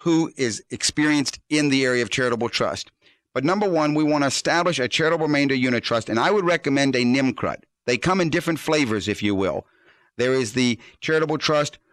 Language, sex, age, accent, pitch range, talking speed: English, male, 50-69, American, 120-155 Hz, 200 wpm